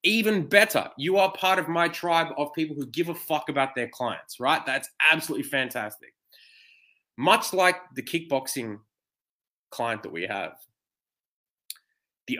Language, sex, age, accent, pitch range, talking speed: English, male, 20-39, Australian, 115-150 Hz, 145 wpm